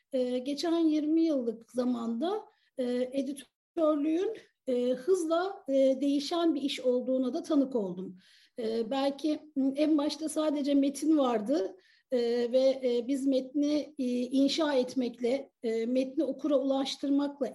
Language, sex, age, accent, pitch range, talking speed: Turkish, female, 50-69, native, 260-305 Hz, 125 wpm